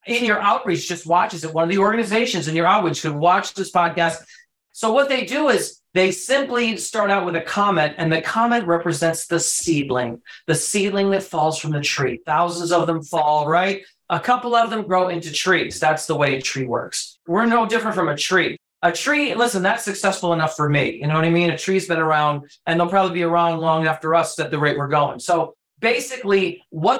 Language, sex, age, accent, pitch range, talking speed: English, male, 40-59, American, 160-205 Hz, 220 wpm